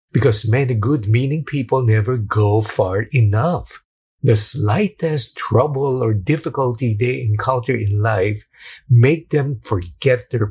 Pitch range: 105-130 Hz